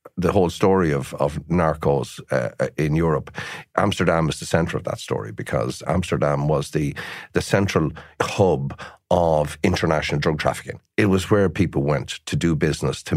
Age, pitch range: 50-69, 80-110 Hz